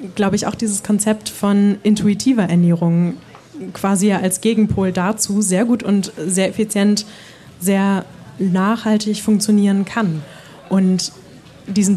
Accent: German